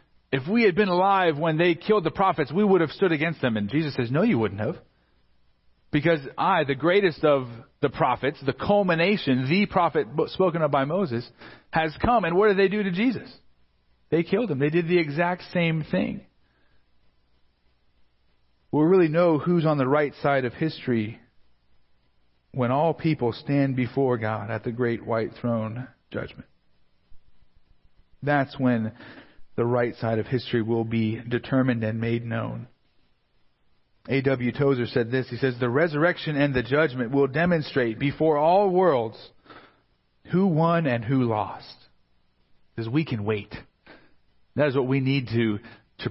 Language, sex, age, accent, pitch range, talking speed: English, male, 40-59, American, 110-160 Hz, 160 wpm